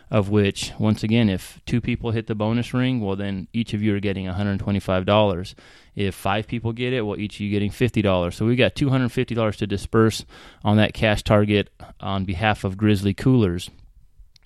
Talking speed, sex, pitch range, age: 185 wpm, male, 105-120 Hz, 30-49